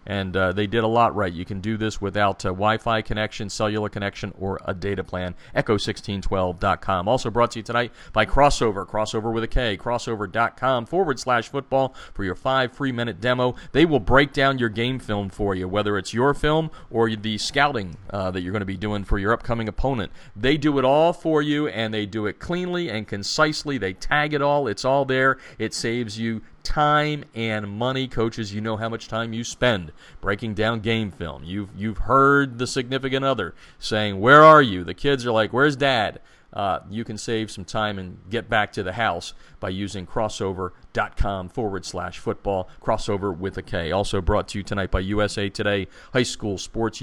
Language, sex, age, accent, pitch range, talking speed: English, male, 40-59, American, 100-125 Hz, 210 wpm